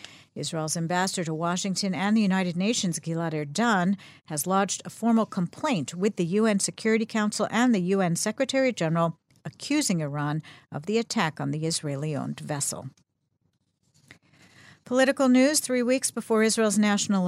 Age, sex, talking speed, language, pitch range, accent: 50-69, female, 140 wpm, English, 160-220 Hz, American